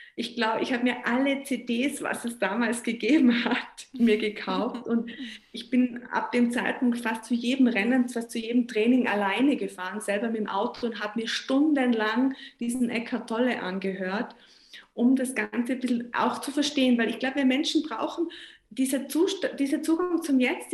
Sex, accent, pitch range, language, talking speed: female, German, 230-275 Hz, German, 180 wpm